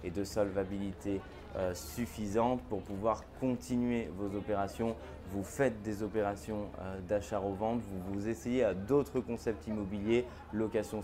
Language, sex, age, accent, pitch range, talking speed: French, male, 20-39, French, 100-120 Hz, 130 wpm